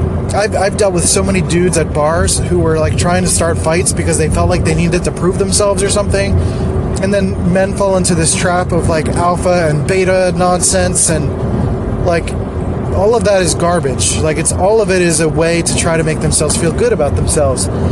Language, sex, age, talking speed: English, male, 20-39, 220 wpm